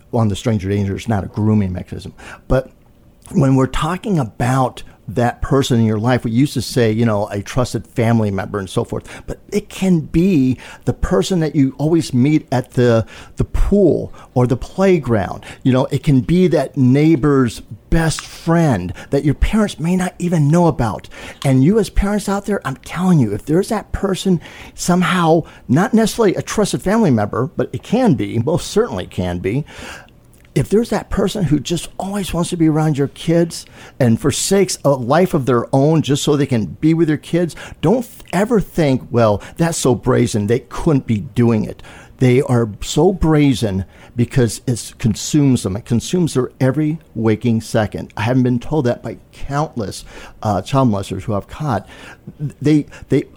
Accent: American